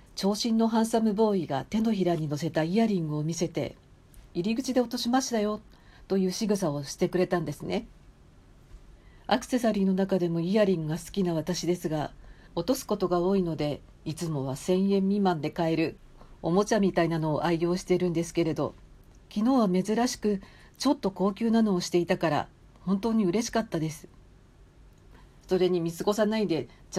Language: Japanese